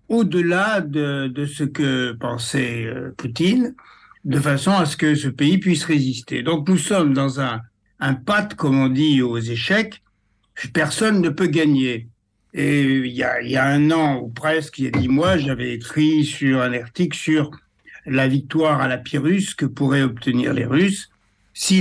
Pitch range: 130-160 Hz